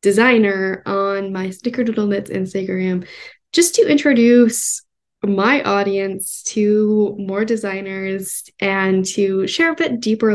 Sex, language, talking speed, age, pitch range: female, English, 120 wpm, 10-29, 195-235 Hz